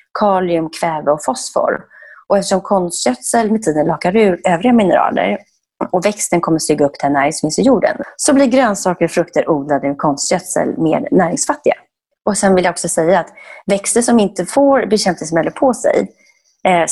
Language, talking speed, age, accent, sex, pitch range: Swedish, 165 wpm, 30-49, native, female, 155-215 Hz